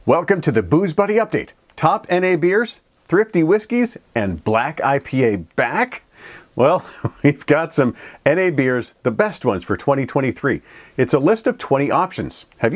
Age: 40-59